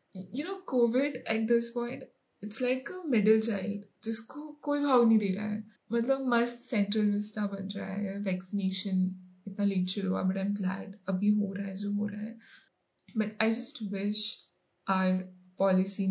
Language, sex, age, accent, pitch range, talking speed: Hindi, female, 10-29, native, 195-230 Hz, 95 wpm